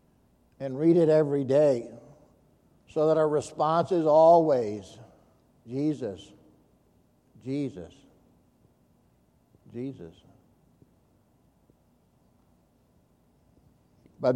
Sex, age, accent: male, 60-79, American